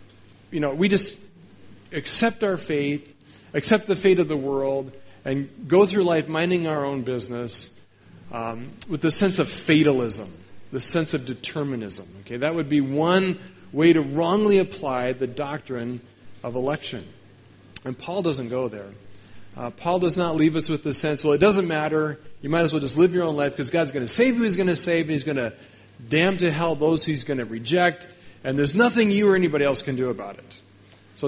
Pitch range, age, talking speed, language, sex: 120-165 Hz, 40-59, 200 wpm, English, male